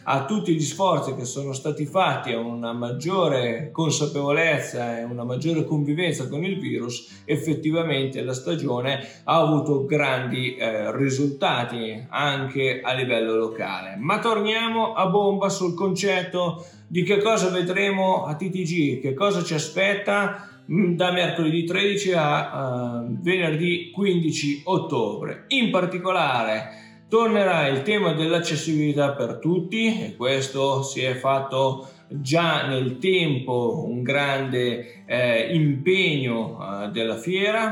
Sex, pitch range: male, 130-180 Hz